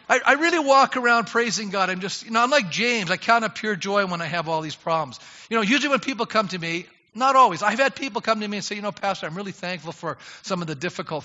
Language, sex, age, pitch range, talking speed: English, male, 50-69, 175-250 Hz, 290 wpm